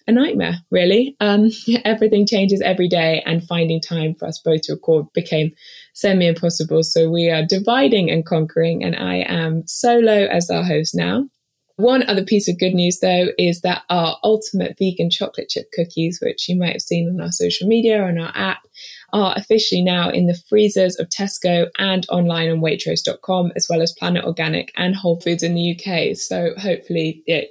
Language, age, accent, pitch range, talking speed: English, 20-39, British, 165-195 Hz, 190 wpm